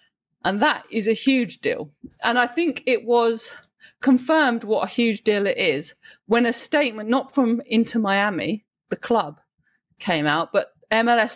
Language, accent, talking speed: English, British, 165 wpm